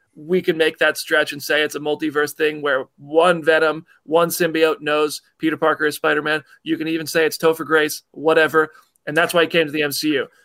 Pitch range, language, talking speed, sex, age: 160-220 Hz, English, 210 wpm, male, 40-59